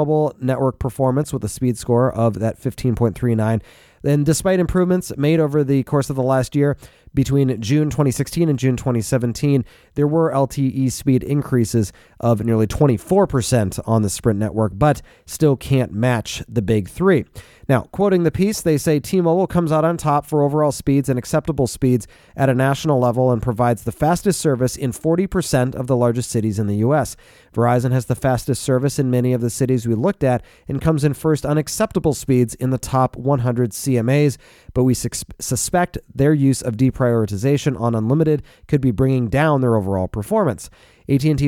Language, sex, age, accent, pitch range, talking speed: English, male, 30-49, American, 120-150 Hz, 175 wpm